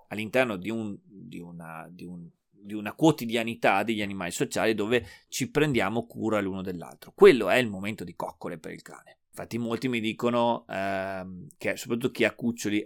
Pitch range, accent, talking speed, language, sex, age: 95-125 Hz, native, 175 wpm, Italian, male, 30-49